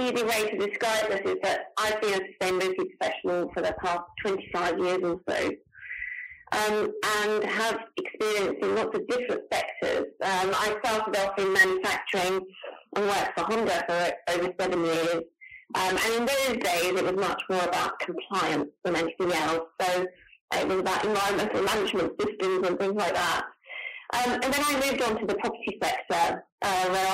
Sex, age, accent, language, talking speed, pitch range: female, 30-49, British, English, 175 wpm, 185-235 Hz